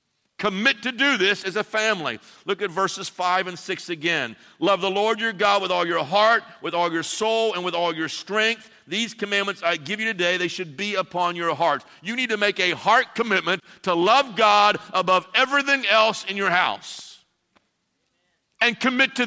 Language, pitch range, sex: English, 160-215 Hz, male